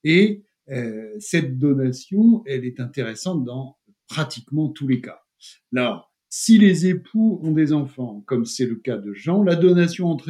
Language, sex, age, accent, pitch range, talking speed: French, male, 60-79, French, 130-180 Hz, 165 wpm